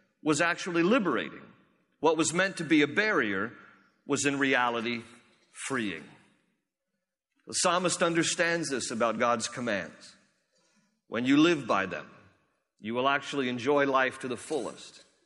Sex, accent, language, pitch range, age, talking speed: male, American, English, 145-175 Hz, 50-69, 135 wpm